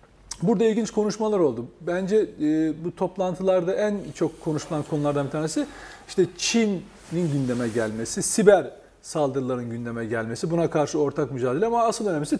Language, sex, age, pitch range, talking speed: Turkish, male, 40-59, 160-230 Hz, 135 wpm